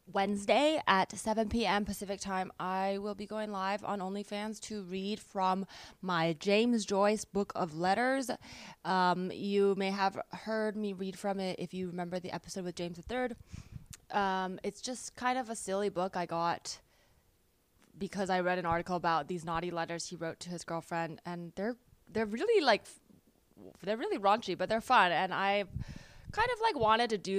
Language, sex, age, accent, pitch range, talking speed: English, female, 20-39, American, 180-225 Hz, 185 wpm